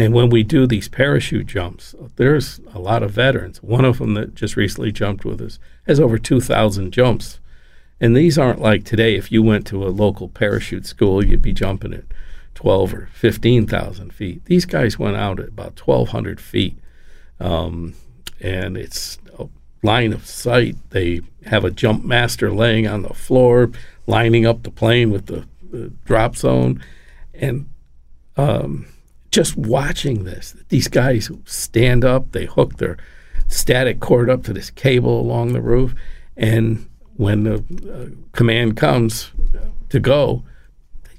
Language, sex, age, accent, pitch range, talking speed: English, male, 60-79, American, 90-120 Hz, 160 wpm